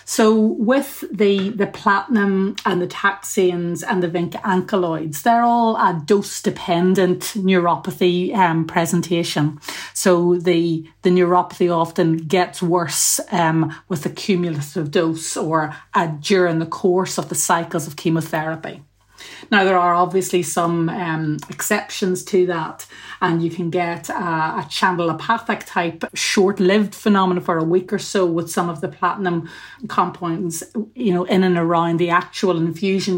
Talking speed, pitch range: 140 wpm, 170-195 Hz